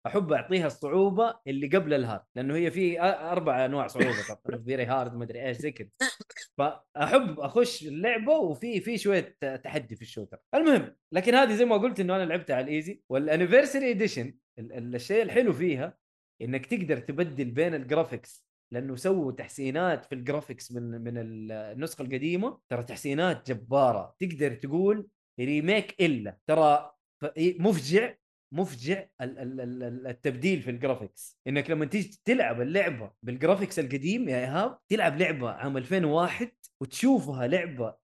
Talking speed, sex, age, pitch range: 135 wpm, male, 20-39, 130-190 Hz